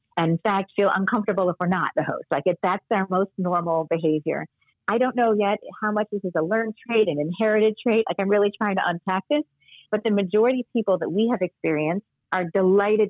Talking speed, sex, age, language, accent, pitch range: 225 wpm, female, 40-59, English, American, 160-200 Hz